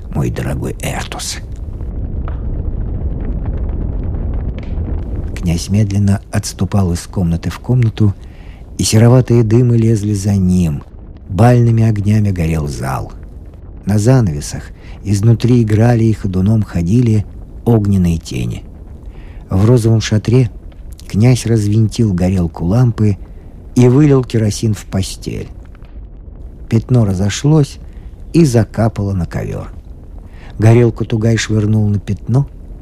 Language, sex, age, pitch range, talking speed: Russian, male, 50-69, 85-115 Hz, 95 wpm